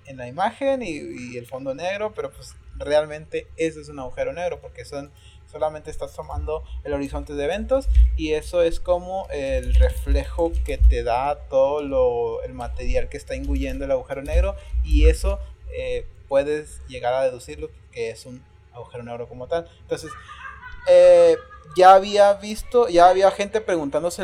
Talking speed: 165 wpm